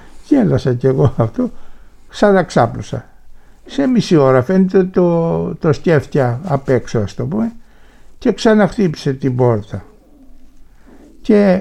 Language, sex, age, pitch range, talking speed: Greek, male, 60-79, 120-185 Hz, 115 wpm